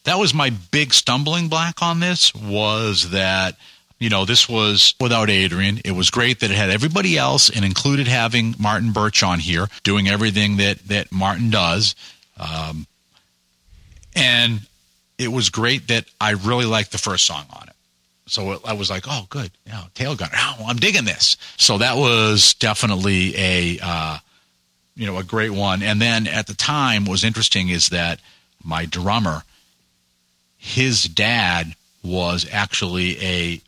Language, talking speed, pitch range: English, 160 wpm, 85-115 Hz